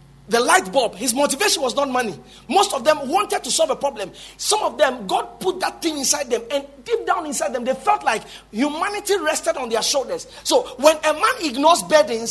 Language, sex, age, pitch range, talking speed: English, male, 40-59, 225-320 Hz, 215 wpm